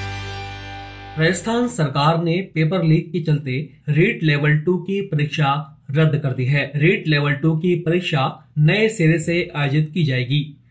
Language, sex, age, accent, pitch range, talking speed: Hindi, male, 30-49, native, 140-165 Hz, 150 wpm